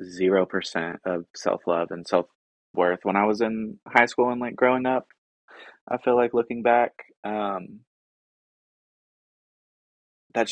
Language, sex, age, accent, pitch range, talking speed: English, male, 20-39, American, 90-110 Hz, 130 wpm